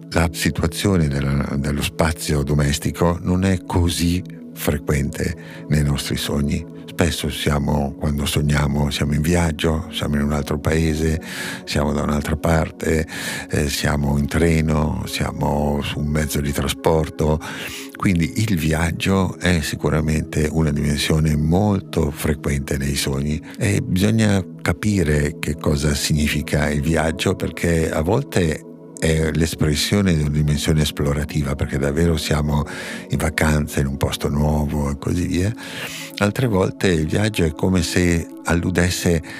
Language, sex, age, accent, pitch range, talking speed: Italian, male, 60-79, native, 75-85 Hz, 130 wpm